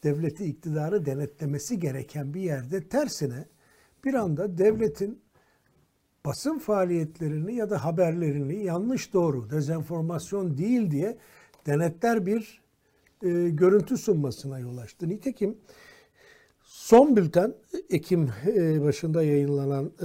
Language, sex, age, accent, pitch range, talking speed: Turkish, male, 60-79, native, 140-180 Hz, 100 wpm